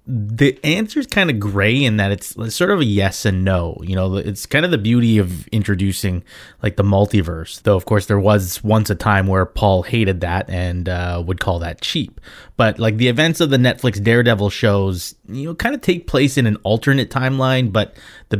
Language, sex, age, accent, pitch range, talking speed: English, male, 20-39, American, 100-125 Hz, 215 wpm